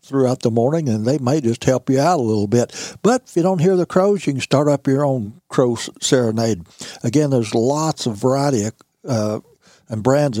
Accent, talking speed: American, 215 wpm